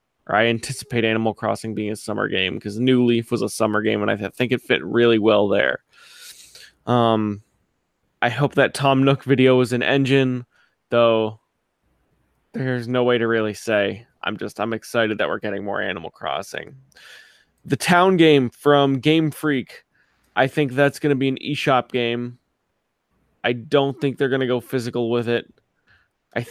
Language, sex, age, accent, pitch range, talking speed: English, male, 20-39, American, 115-135 Hz, 175 wpm